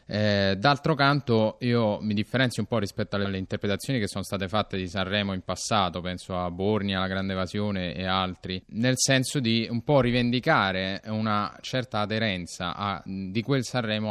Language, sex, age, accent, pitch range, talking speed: Italian, male, 20-39, native, 95-115 Hz, 175 wpm